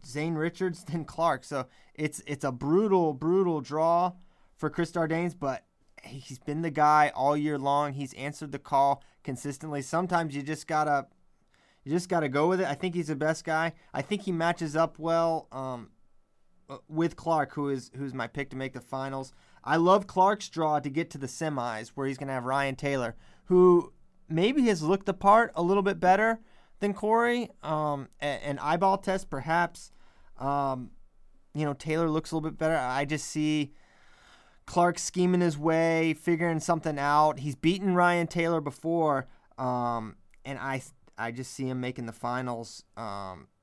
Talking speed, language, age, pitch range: 175 wpm, English, 20-39, 135-165 Hz